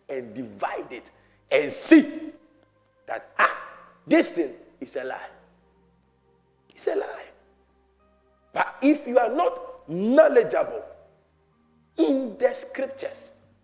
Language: English